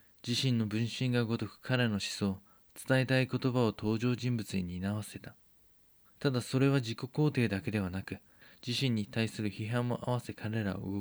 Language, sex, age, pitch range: Japanese, male, 20-39, 100-120 Hz